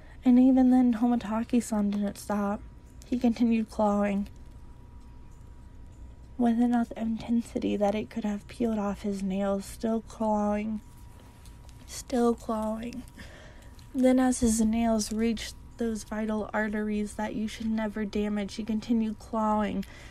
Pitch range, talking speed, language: 205-235 Hz, 120 wpm, English